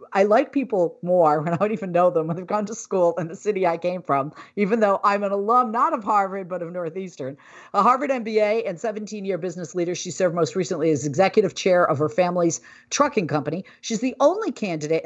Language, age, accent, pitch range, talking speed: English, 40-59, American, 170-225 Hz, 220 wpm